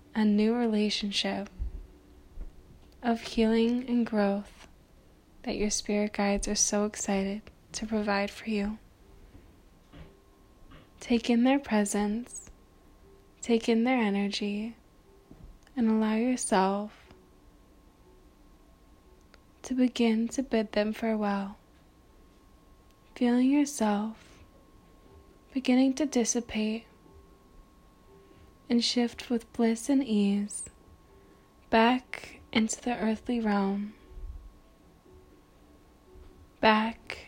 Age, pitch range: 10-29, 195-235 Hz